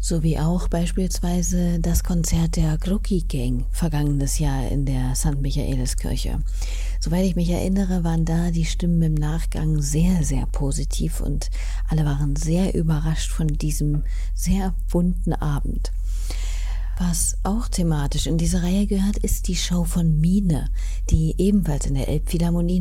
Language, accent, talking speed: German, German, 140 wpm